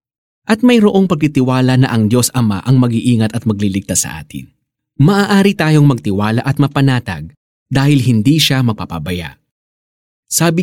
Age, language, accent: 20-39, Filipino, native